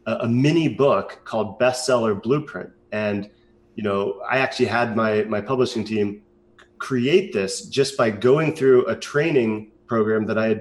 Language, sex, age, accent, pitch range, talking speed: English, male, 30-49, American, 110-135 Hz, 160 wpm